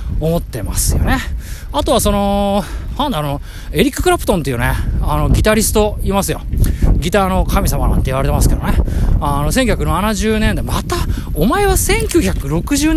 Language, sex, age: Japanese, male, 20-39